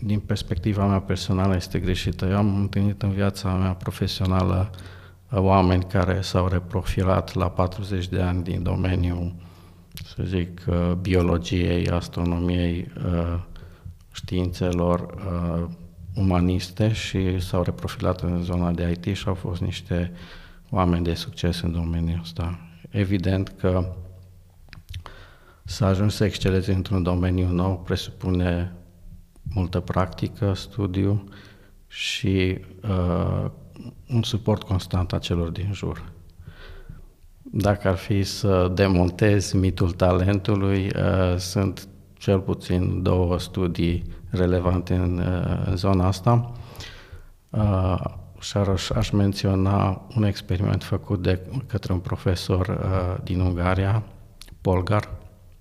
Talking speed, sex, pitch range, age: 110 wpm, male, 90-100 Hz, 50-69